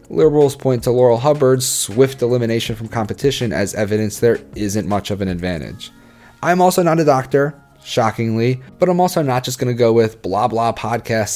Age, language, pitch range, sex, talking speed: 30-49, English, 105-135 Hz, male, 185 wpm